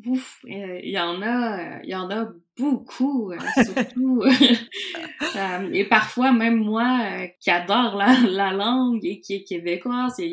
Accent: Canadian